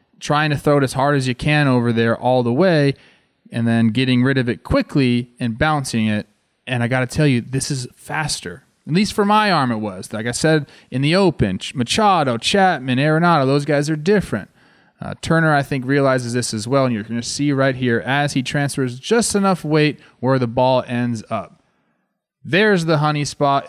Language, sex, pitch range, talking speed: English, male, 120-150 Hz, 210 wpm